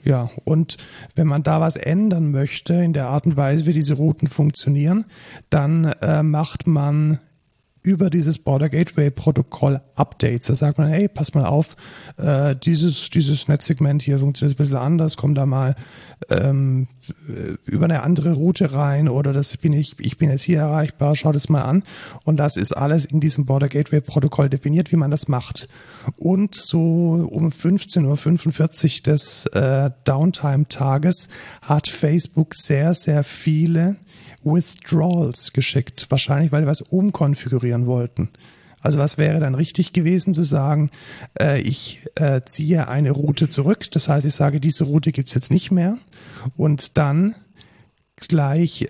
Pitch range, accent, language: 140-165 Hz, German, German